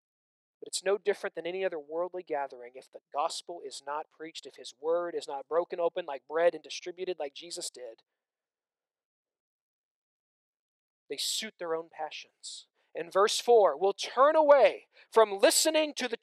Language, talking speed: English, 160 wpm